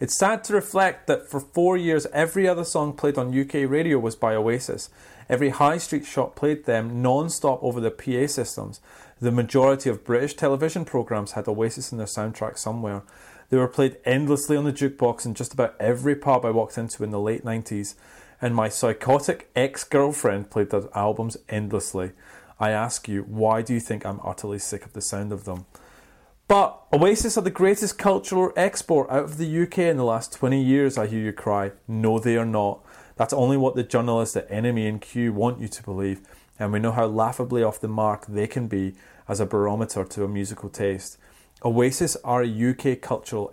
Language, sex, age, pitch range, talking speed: English, male, 30-49, 105-135 Hz, 195 wpm